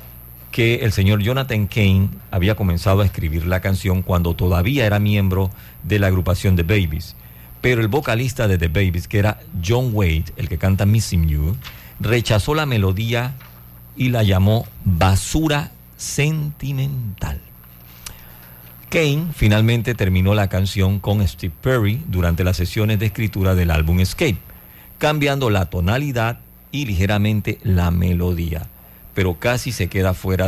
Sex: male